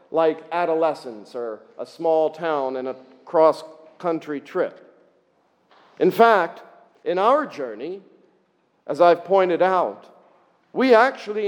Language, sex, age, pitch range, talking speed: English, male, 50-69, 160-220 Hz, 110 wpm